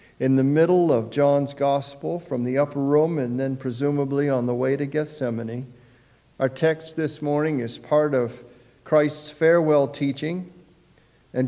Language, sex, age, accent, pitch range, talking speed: English, male, 50-69, American, 125-155 Hz, 150 wpm